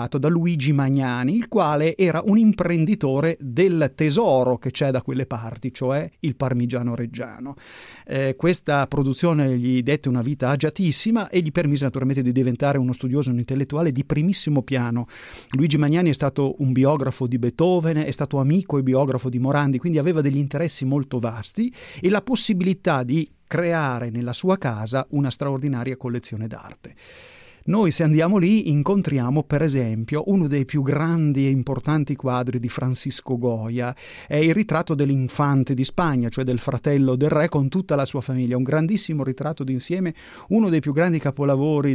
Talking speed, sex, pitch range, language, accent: 165 wpm, male, 130-155 Hz, Italian, native